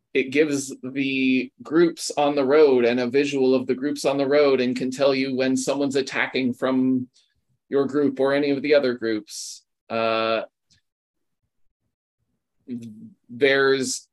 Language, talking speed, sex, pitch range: English, 145 wpm, male, 120-150 Hz